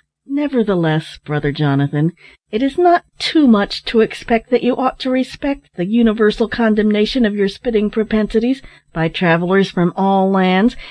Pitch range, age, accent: 180-235 Hz, 50-69, American